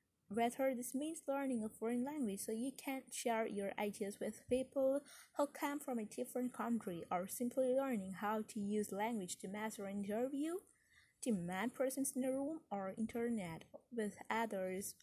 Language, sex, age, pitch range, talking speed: English, female, 20-39, 205-270 Hz, 165 wpm